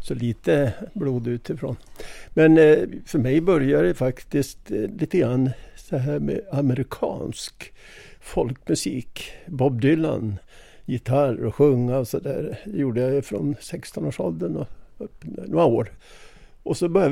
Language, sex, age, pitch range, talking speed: Swedish, male, 60-79, 125-155 Hz, 125 wpm